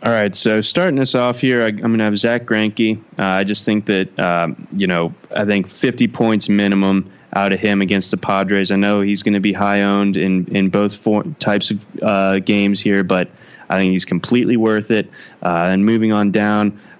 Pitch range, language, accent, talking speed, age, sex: 95-115 Hz, English, American, 220 wpm, 20-39, male